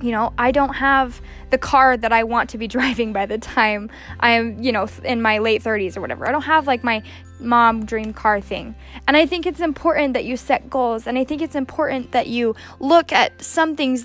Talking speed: 235 wpm